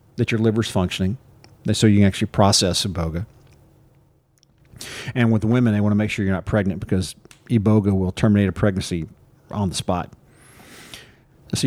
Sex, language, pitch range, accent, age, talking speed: male, English, 105-120 Hz, American, 40-59, 160 wpm